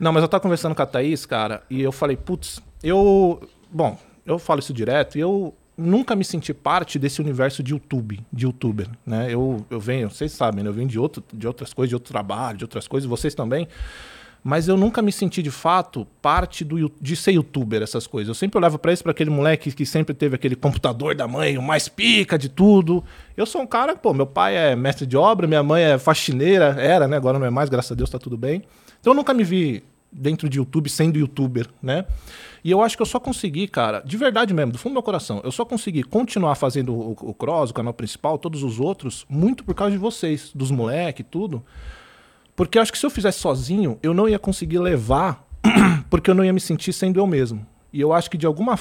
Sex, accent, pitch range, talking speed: male, Brazilian, 130-185 Hz, 235 wpm